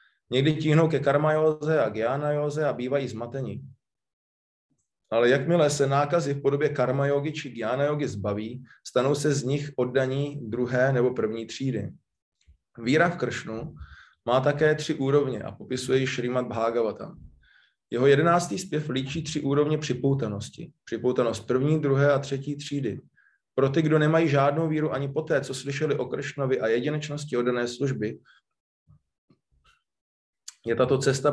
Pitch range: 120-145 Hz